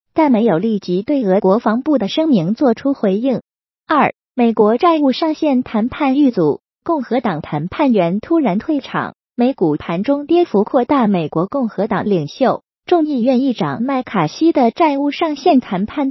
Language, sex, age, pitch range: Chinese, female, 20-39, 200-300 Hz